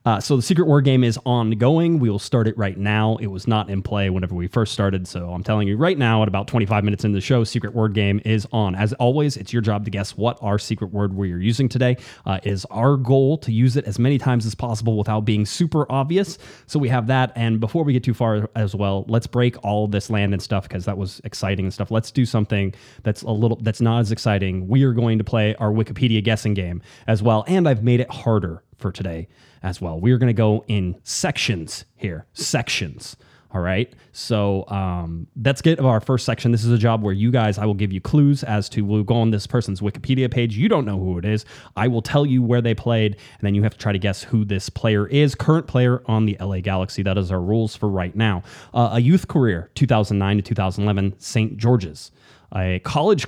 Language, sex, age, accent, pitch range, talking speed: English, male, 20-39, American, 100-125 Hz, 240 wpm